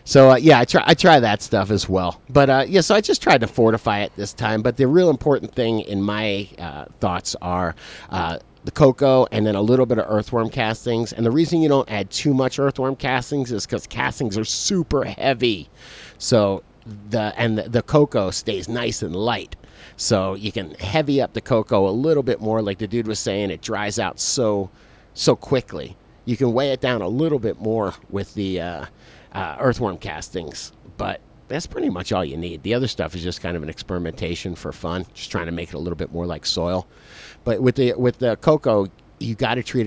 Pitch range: 95-120 Hz